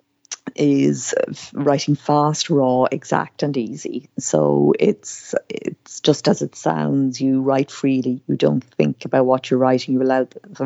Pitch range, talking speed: 130-145 Hz, 150 wpm